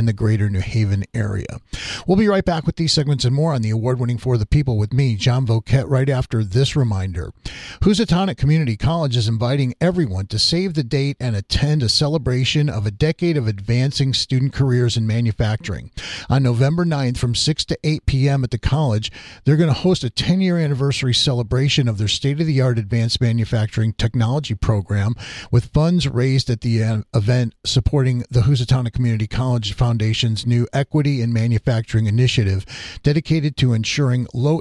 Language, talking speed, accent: English, 170 wpm, American